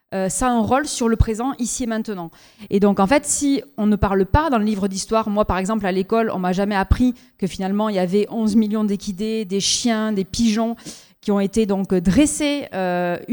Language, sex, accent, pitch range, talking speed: French, female, French, 190-230 Hz, 230 wpm